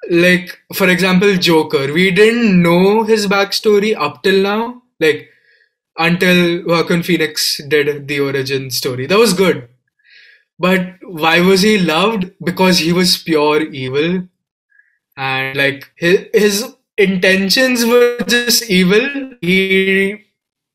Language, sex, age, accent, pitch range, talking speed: English, male, 20-39, Indian, 145-190 Hz, 120 wpm